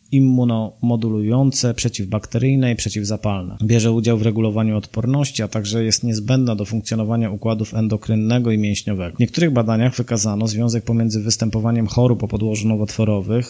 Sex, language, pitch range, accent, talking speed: male, Polish, 105-120 Hz, native, 135 wpm